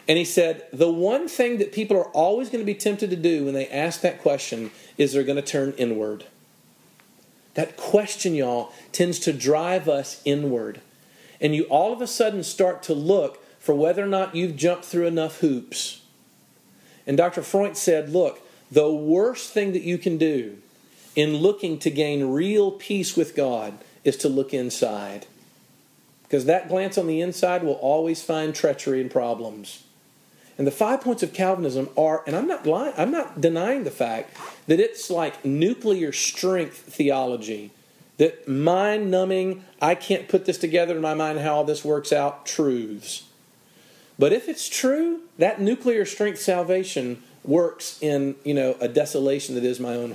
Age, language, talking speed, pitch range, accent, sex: 40-59, English, 175 wpm, 140-195 Hz, American, male